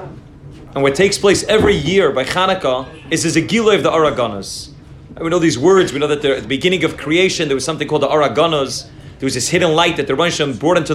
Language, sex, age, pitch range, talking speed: English, male, 30-49, 140-185 Hz, 230 wpm